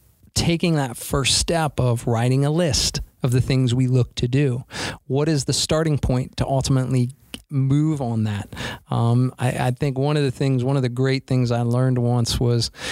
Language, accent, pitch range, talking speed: English, American, 120-155 Hz, 195 wpm